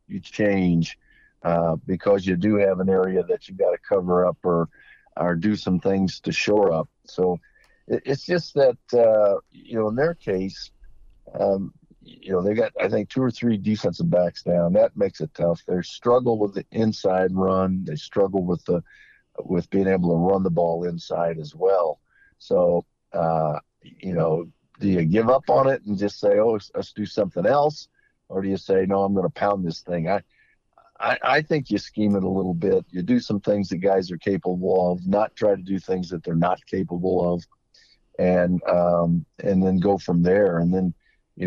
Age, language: 50-69, English